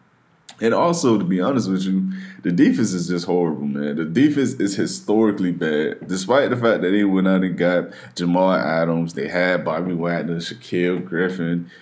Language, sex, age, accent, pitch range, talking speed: English, male, 20-39, American, 85-95 Hz, 180 wpm